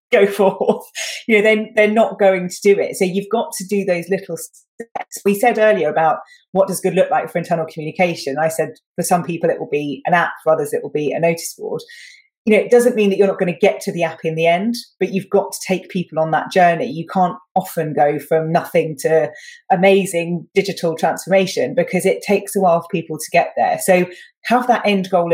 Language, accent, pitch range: English, British, 165-210 Hz